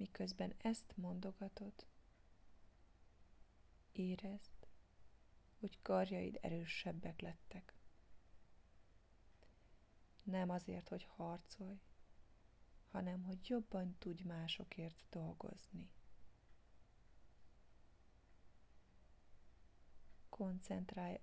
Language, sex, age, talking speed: Hungarian, female, 20-39, 55 wpm